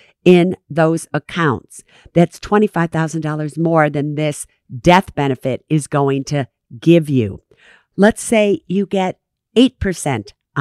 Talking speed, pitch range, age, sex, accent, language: 115 wpm, 140-195 Hz, 50-69, female, American, English